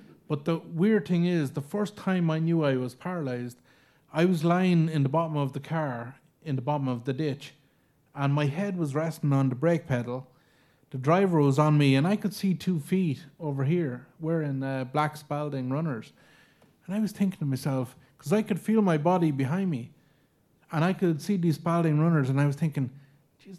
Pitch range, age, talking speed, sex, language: 135-165 Hz, 30-49, 205 wpm, male, English